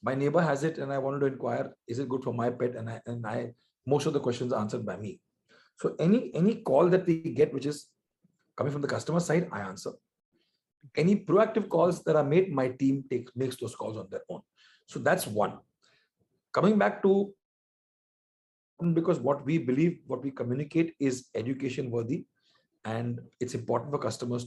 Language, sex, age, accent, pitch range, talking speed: English, male, 40-59, Indian, 120-155 Hz, 195 wpm